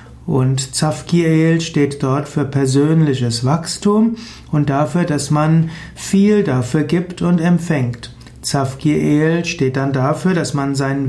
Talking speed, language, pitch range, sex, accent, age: 125 wpm, German, 135-175 Hz, male, German, 60-79